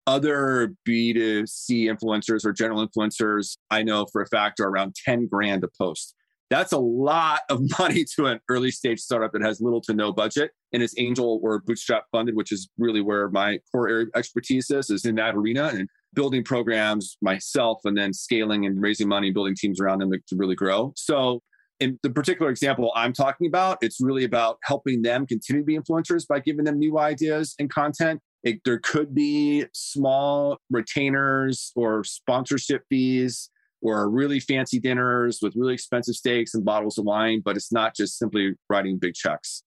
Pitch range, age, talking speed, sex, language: 100-130 Hz, 30-49, 185 wpm, male, English